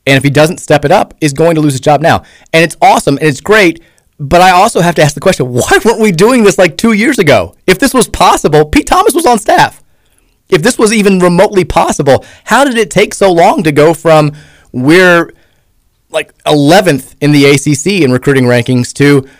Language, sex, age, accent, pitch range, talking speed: English, male, 30-49, American, 125-165 Hz, 220 wpm